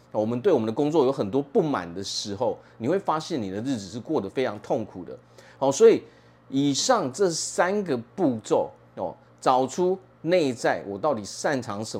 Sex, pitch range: male, 105-145 Hz